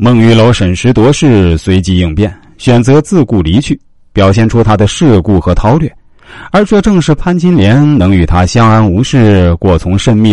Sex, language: male, Chinese